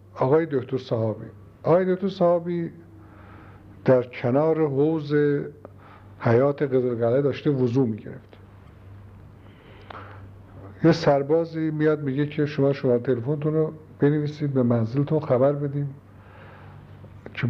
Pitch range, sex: 105-150 Hz, male